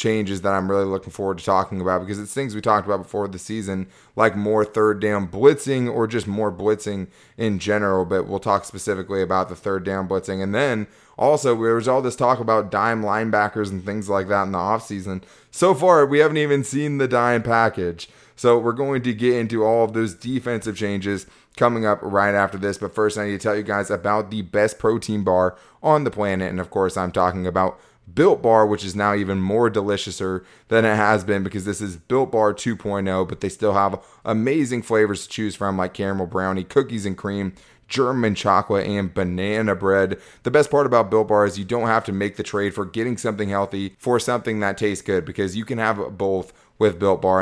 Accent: American